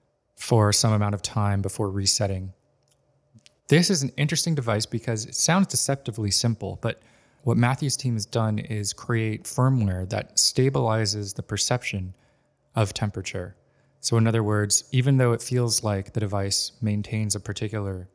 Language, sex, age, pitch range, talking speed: English, male, 20-39, 100-120 Hz, 150 wpm